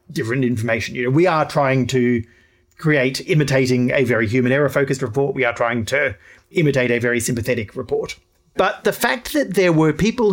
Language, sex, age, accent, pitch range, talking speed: English, male, 30-49, Australian, 125-165 Hz, 185 wpm